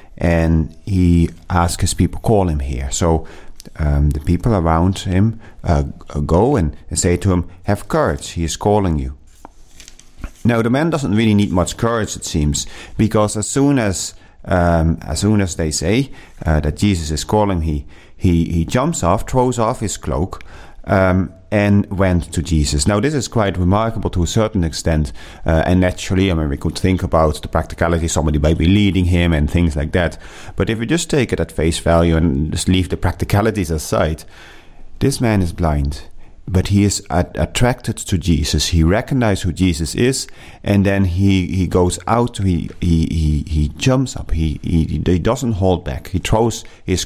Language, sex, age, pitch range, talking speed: English, male, 40-59, 80-100 Hz, 185 wpm